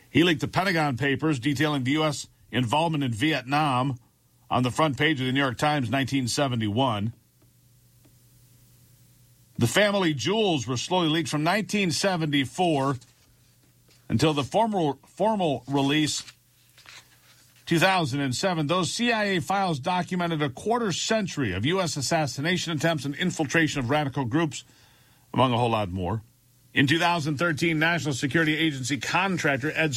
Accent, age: American, 50-69